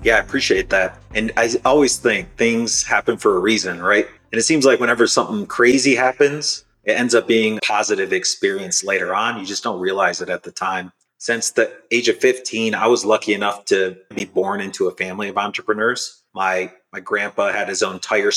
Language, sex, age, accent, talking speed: English, male, 30-49, American, 205 wpm